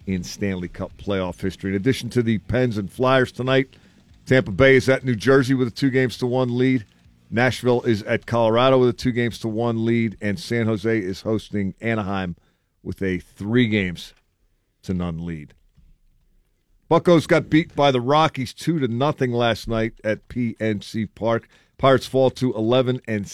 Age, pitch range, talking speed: 50-69, 100-120 Hz, 180 wpm